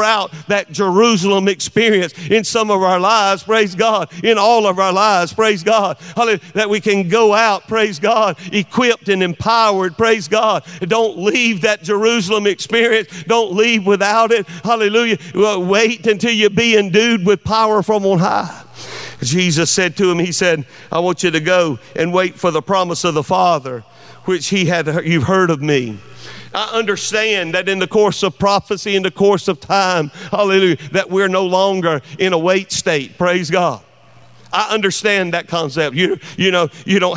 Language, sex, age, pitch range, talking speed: English, male, 50-69, 180-215 Hz, 175 wpm